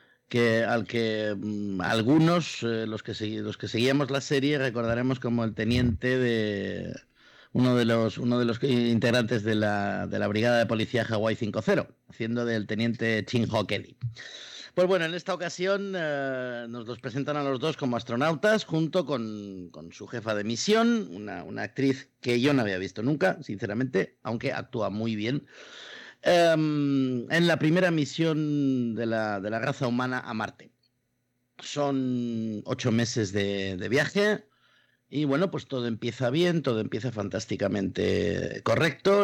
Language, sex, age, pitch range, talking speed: Spanish, male, 50-69, 110-145 Hz, 160 wpm